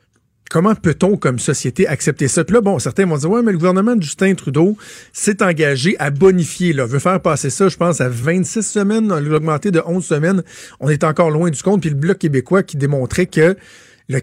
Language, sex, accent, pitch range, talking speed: French, male, Canadian, 140-185 Hz, 215 wpm